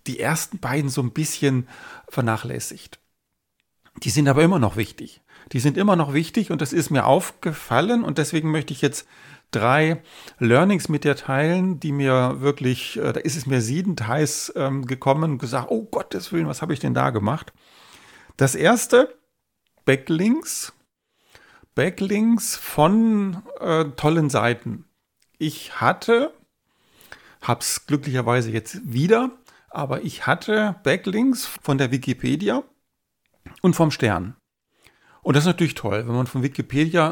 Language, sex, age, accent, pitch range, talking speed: German, male, 40-59, German, 130-170 Hz, 145 wpm